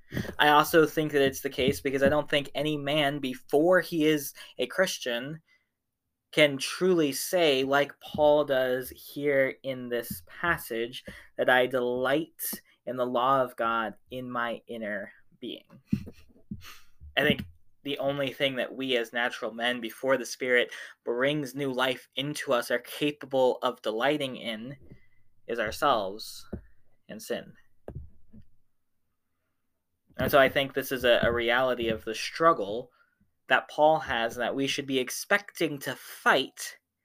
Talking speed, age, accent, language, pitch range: 145 wpm, 20-39, American, English, 115-140 Hz